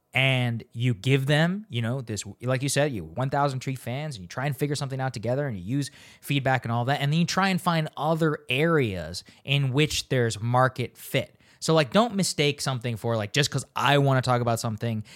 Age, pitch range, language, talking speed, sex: 20-39, 115-155 Hz, English, 225 wpm, male